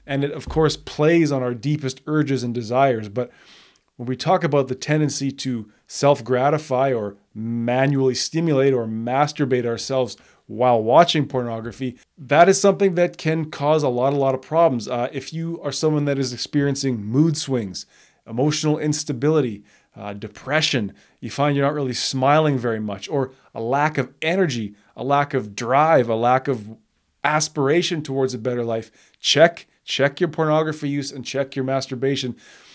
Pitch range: 125-145 Hz